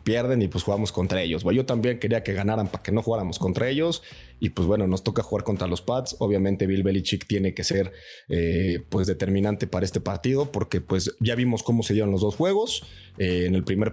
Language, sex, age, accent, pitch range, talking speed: Spanish, male, 30-49, Mexican, 95-115 Hz, 230 wpm